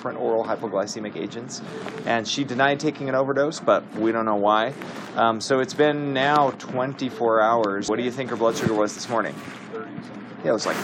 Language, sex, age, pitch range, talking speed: English, male, 30-49, 110-140 Hz, 195 wpm